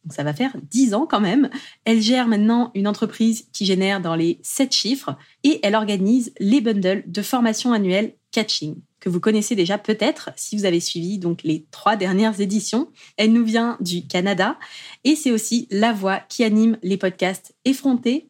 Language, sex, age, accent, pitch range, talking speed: French, female, 20-39, French, 190-245 Hz, 180 wpm